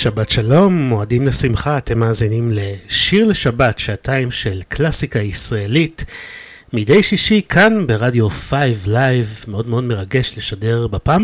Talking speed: 125 wpm